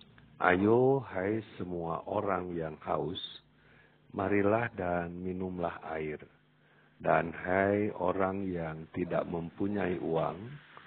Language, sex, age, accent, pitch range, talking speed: Indonesian, male, 50-69, native, 85-110 Hz, 95 wpm